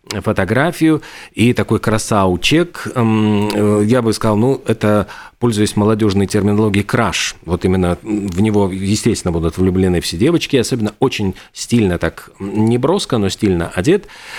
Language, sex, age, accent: Russian, male, 40-59, native